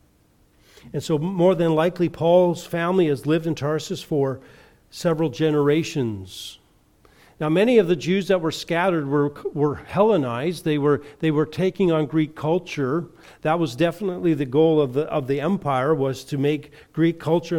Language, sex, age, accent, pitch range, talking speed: English, male, 50-69, American, 145-175 Hz, 165 wpm